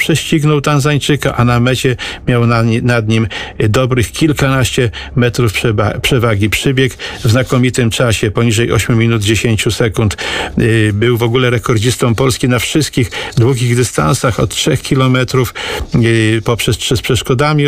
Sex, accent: male, native